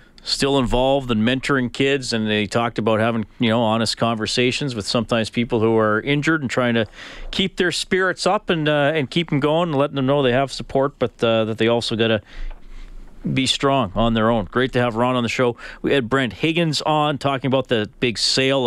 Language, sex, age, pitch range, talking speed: English, male, 40-59, 110-135 Hz, 220 wpm